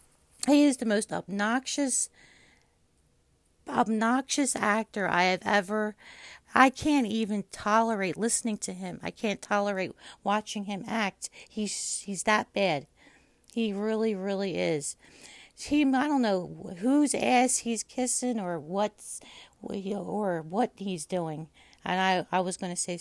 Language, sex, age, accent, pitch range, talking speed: English, female, 40-59, American, 170-220 Hz, 135 wpm